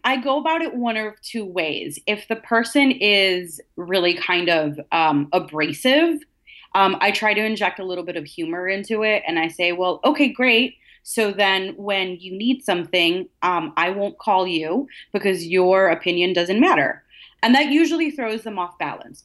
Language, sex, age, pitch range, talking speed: English, female, 30-49, 165-215 Hz, 180 wpm